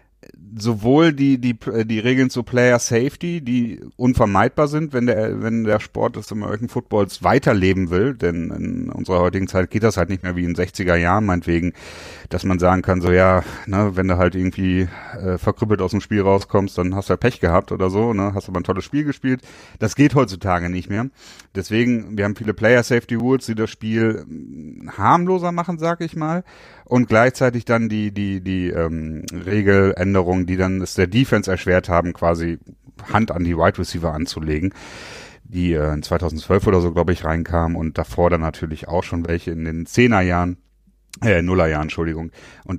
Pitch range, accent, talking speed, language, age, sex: 90-120 Hz, German, 185 wpm, German, 40-59, male